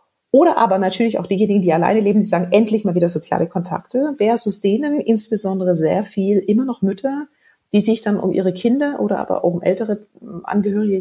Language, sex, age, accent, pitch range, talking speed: German, female, 40-59, German, 175-225 Hz, 190 wpm